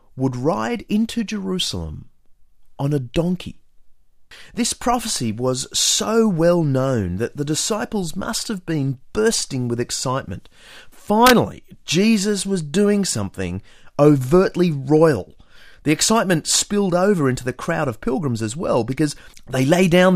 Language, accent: English, Australian